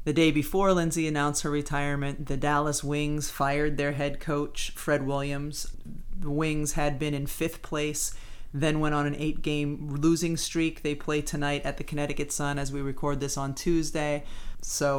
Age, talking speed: 30-49, 175 wpm